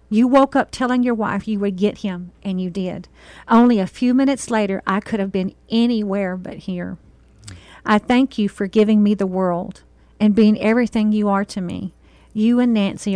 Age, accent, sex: 50-69, American, female